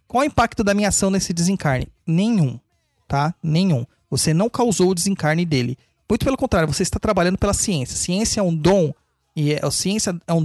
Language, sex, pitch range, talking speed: Portuguese, male, 160-210 Hz, 195 wpm